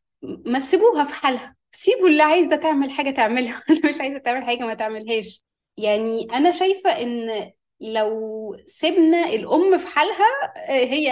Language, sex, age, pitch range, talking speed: Arabic, female, 20-39, 225-325 Hz, 145 wpm